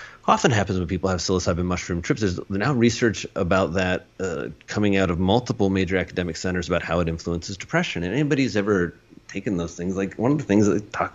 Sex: male